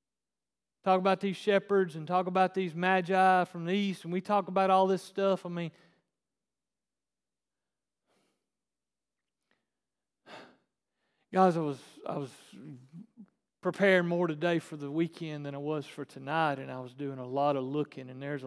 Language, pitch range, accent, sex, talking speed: English, 145-175 Hz, American, male, 155 wpm